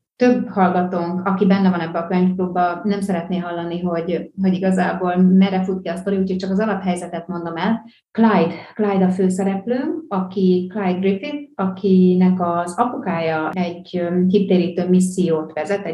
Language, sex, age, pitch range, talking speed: Hungarian, female, 30-49, 175-195 Hz, 145 wpm